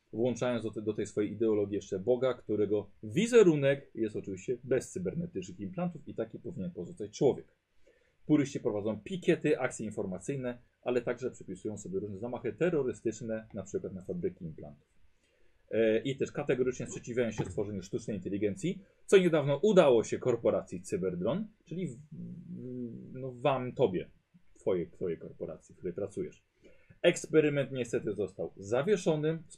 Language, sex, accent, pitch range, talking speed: Polish, male, native, 105-165 Hz, 130 wpm